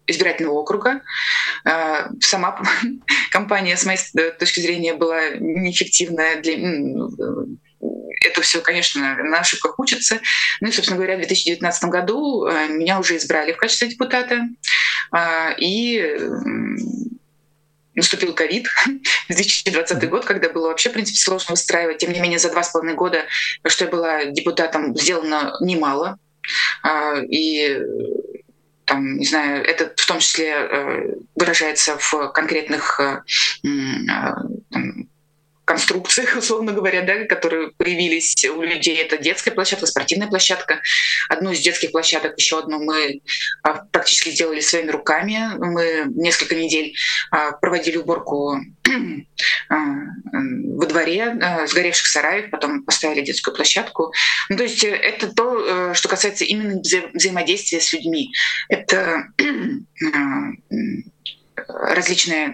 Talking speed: 120 wpm